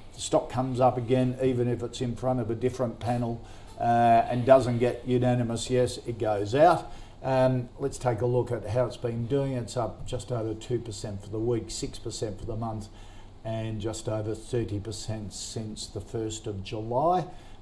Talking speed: 185 wpm